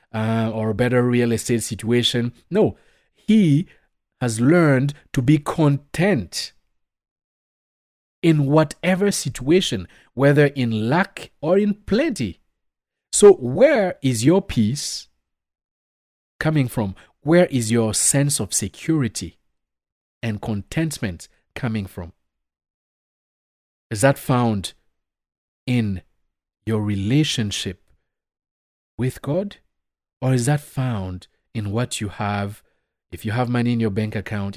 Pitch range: 100-140 Hz